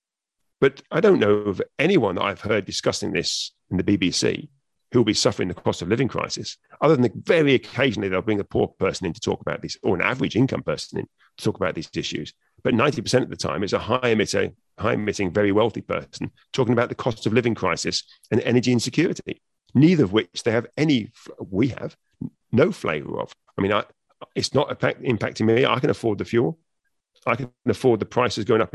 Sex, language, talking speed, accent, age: male, English, 215 wpm, British, 40-59